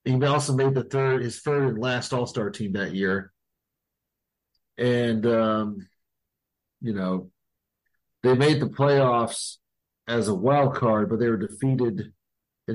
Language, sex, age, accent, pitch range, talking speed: English, male, 40-59, American, 110-135 Hz, 145 wpm